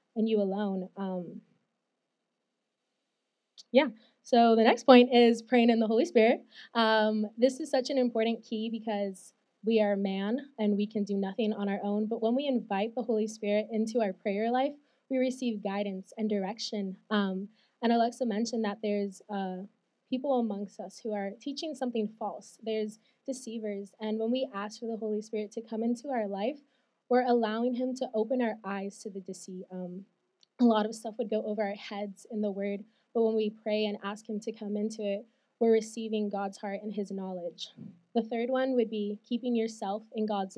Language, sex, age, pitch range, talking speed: English, female, 20-39, 205-240 Hz, 190 wpm